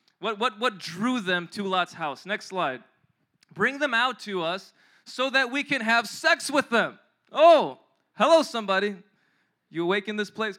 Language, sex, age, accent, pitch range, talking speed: English, male, 20-39, American, 200-280 Hz, 175 wpm